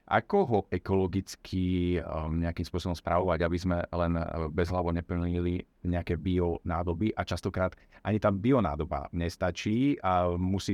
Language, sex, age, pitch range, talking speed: Slovak, male, 40-59, 90-105 Hz, 125 wpm